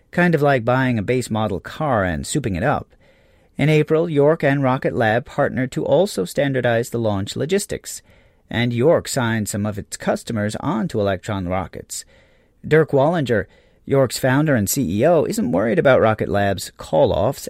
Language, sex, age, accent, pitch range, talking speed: English, male, 40-59, American, 105-150 Hz, 165 wpm